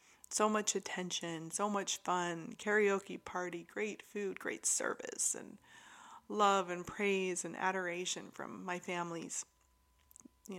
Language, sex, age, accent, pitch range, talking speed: English, female, 30-49, American, 160-215 Hz, 125 wpm